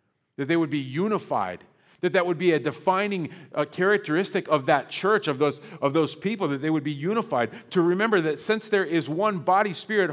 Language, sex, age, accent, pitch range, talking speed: English, male, 40-59, American, 155-195 Hz, 200 wpm